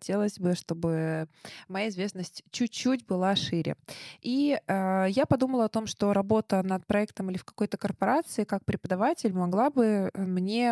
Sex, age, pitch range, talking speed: female, 20-39, 185-225 Hz, 150 wpm